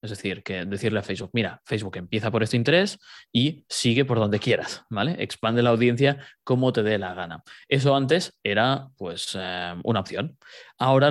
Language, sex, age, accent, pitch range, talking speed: Spanish, male, 20-39, Spanish, 105-135 Hz, 185 wpm